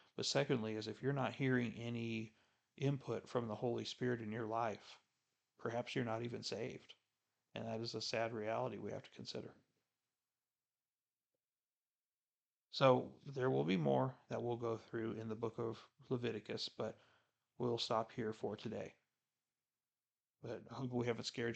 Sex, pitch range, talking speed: male, 110-125 Hz, 160 wpm